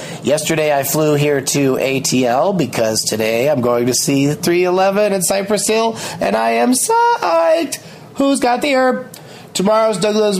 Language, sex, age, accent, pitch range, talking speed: English, male, 30-49, American, 135-195 Hz, 150 wpm